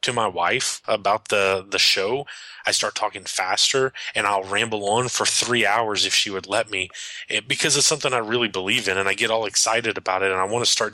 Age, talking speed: 20-39, 235 wpm